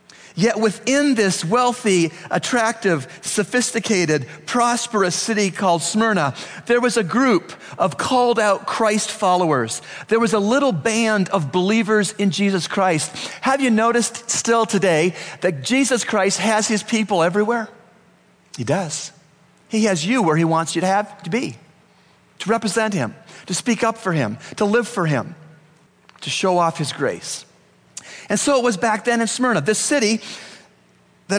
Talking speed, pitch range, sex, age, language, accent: 155 wpm, 175-230 Hz, male, 40-59, English, American